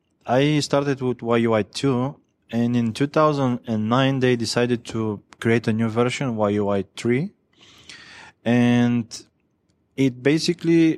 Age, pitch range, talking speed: 20-39, 110-130 Hz, 100 wpm